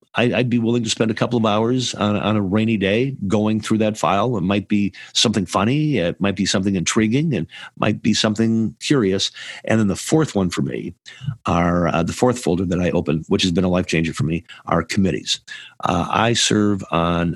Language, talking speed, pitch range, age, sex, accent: English, 215 wpm, 90-110 Hz, 50-69, male, American